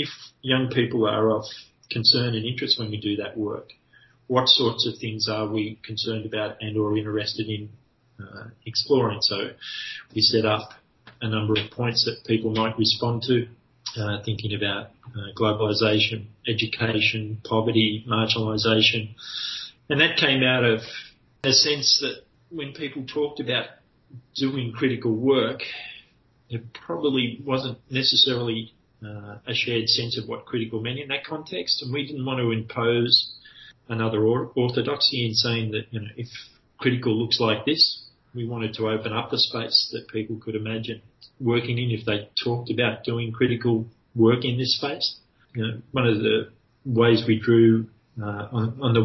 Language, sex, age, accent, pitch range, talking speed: English, male, 30-49, Australian, 110-125 Hz, 160 wpm